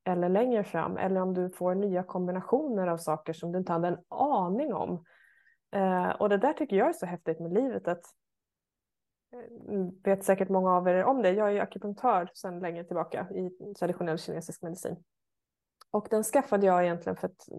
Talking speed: 185 wpm